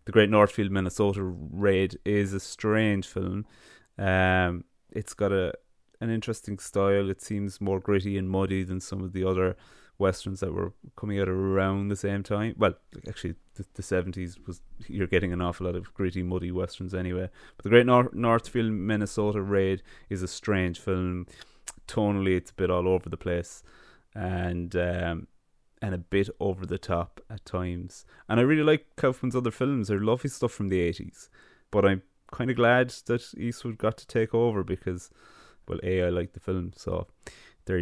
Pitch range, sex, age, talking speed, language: 90-110 Hz, male, 20-39, 180 wpm, English